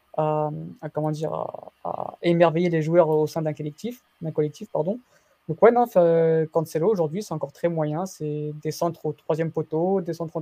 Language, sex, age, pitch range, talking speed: French, female, 20-39, 155-180 Hz, 190 wpm